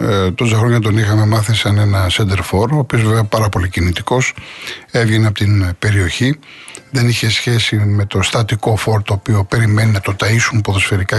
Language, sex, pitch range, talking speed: Greek, male, 105-130 Hz, 180 wpm